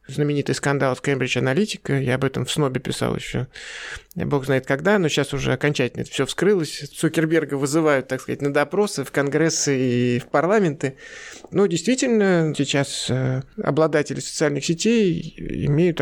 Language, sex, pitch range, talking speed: Russian, male, 140-170 Hz, 150 wpm